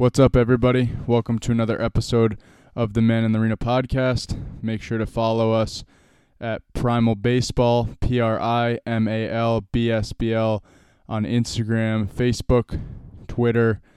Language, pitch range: English, 110-125 Hz